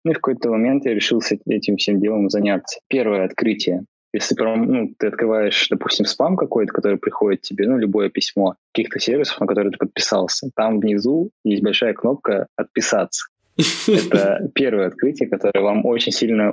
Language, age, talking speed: Russian, 20-39, 165 wpm